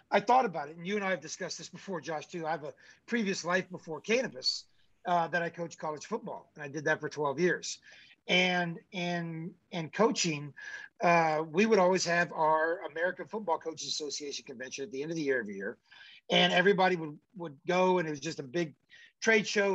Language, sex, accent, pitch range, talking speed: English, male, American, 155-185 Hz, 215 wpm